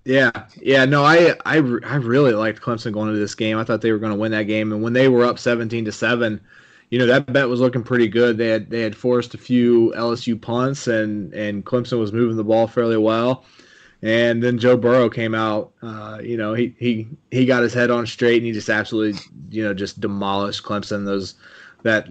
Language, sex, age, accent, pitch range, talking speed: English, male, 20-39, American, 105-120 Hz, 230 wpm